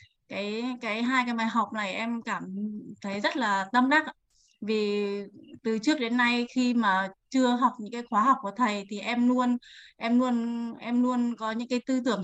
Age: 20-39